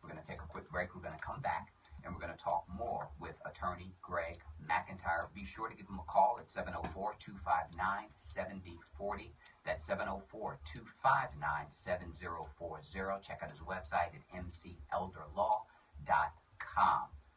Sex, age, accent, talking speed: male, 40-59, American, 135 wpm